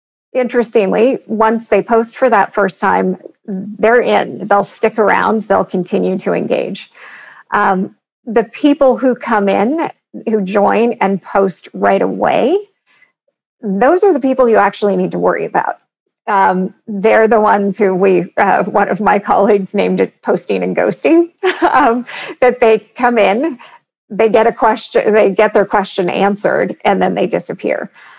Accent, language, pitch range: American, English, 190-235 Hz